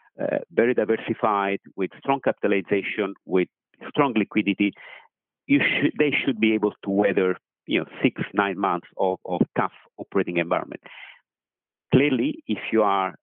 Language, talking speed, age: English, 120 wpm, 50-69